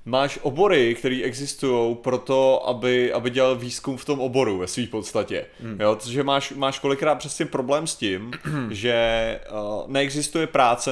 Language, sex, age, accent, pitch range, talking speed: Czech, male, 30-49, native, 125-150 Hz, 155 wpm